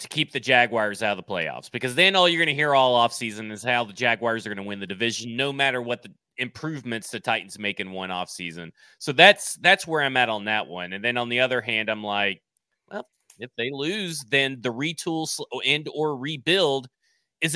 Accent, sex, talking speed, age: American, male, 225 wpm, 30-49